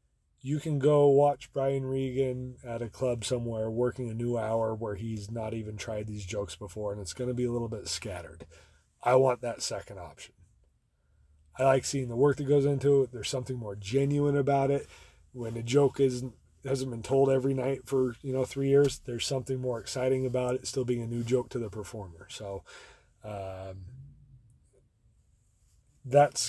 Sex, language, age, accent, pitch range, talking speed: male, English, 30-49, American, 110-135 Hz, 185 wpm